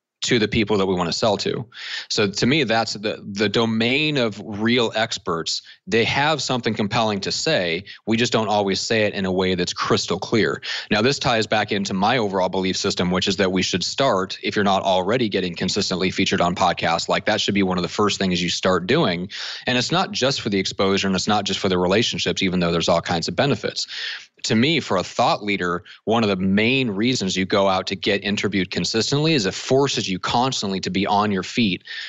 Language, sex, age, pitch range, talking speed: English, male, 30-49, 95-115 Hz, 230 wpm